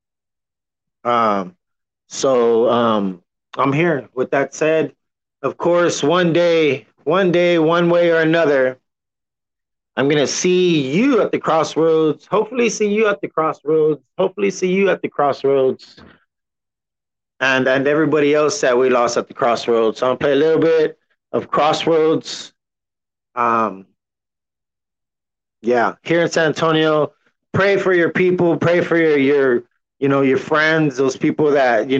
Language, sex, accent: English, male, American